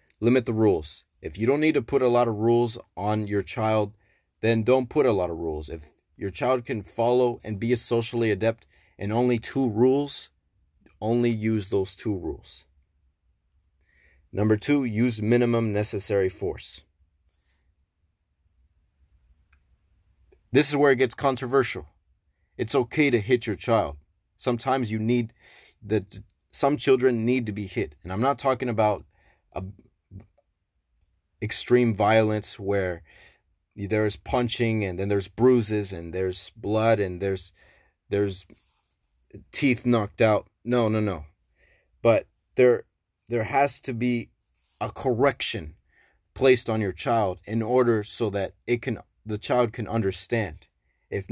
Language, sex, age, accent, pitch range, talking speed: English, male, 30-49, American, 90-120 Hz, 140 wpm